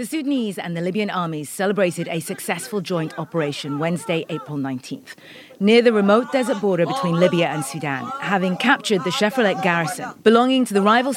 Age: 30-49